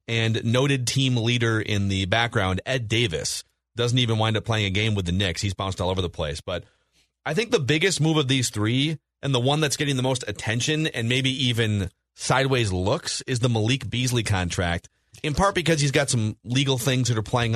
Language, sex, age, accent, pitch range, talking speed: English, male, 30-49, American, 105-145 Hz, 215 wpm